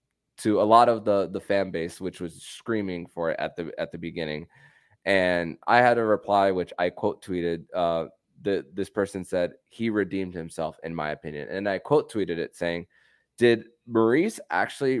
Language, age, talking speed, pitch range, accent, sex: English, 20-39, 190 wpm, 85-105 Hz, American, male